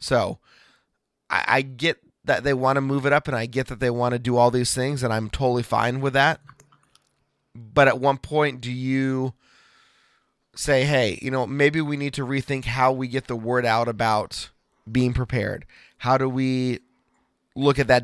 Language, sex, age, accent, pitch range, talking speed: English, male, 30-49, American, 115-135 Hz, 195 wpm